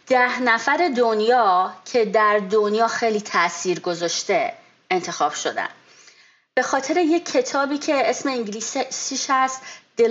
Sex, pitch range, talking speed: female, 200-280 Hz, 125 wpm